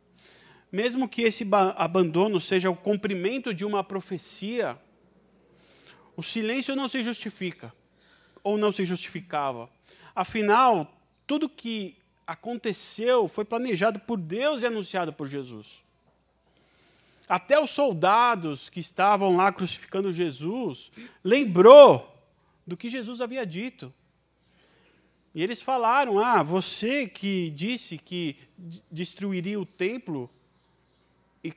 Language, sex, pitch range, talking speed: Portuguese, male, 170-225 Hz, 110 wpm